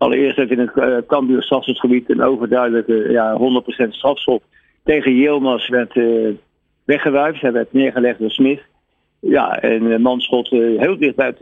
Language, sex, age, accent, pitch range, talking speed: Dutch, male, 50-69, Dutch, 120-140 Hz, 165 wpm